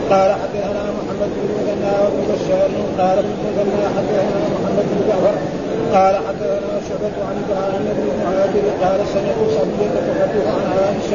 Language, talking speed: Arabic, 125 wpm